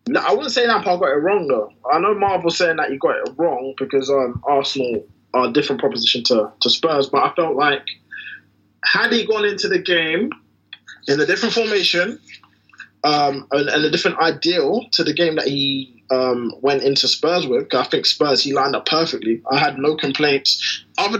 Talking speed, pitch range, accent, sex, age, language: 200 wpm, 140-185 Hz, British, male, 20-39, English